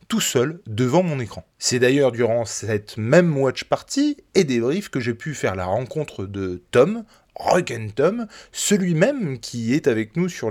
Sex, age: male, 20-39